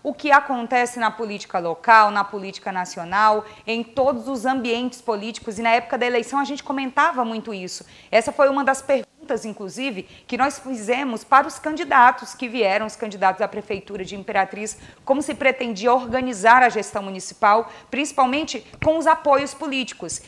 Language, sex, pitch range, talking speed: Portuguese, female, 200-255 Hz, 165 wpm